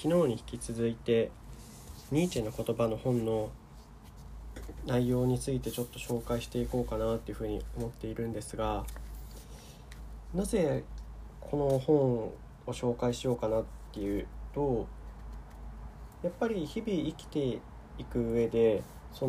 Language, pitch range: Japanese, 105-155 Hz